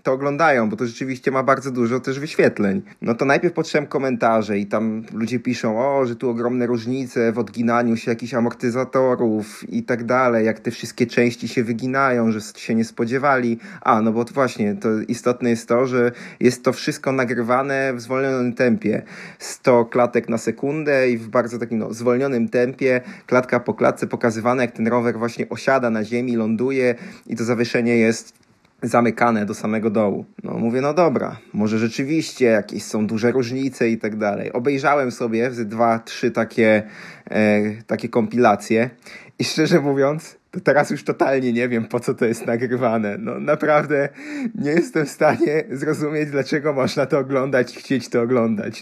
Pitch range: 115-135 Hz